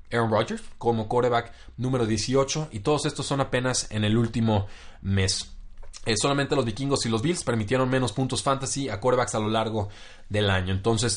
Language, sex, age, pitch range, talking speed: Spanish, male, 30-49, 100-120 Hz, 185 wpm